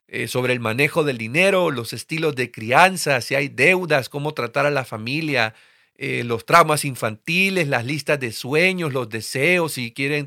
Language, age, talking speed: Spanish, 40-59, 175 wpm